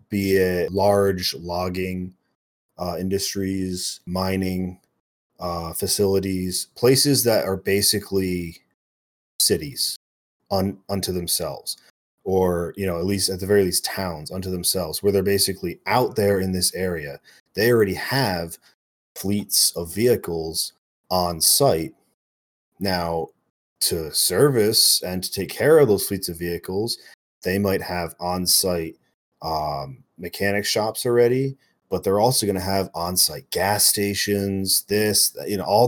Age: 30-49